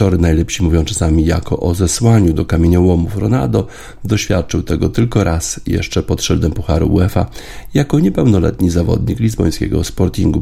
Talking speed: 130 wpm